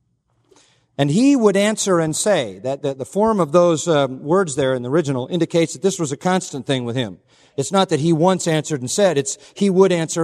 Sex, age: male, 40-59